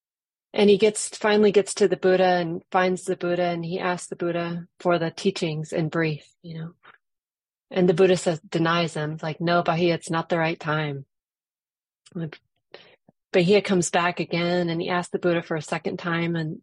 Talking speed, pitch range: 190 wpm, 165-190 Hz